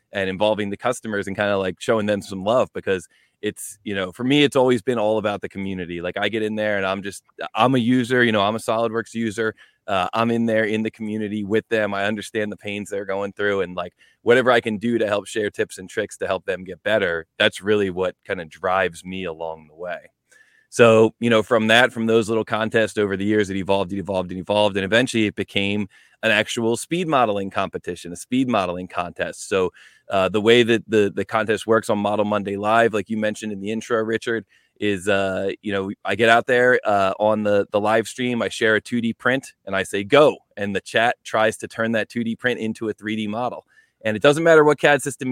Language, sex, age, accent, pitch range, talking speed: English, male, 20-39, American, 100-115 Hz, 235 wpm